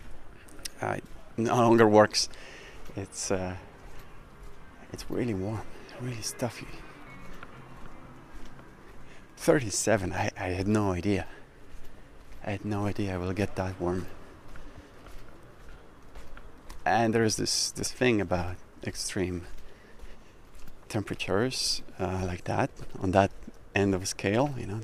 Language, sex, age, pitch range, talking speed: English, male, 30-49, 90-105 Hz, 115 wpm